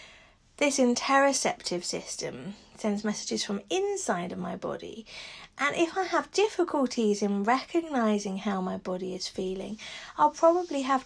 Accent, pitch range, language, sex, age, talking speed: British, 210-275 Hz, English, female, 40-59, 135 wpm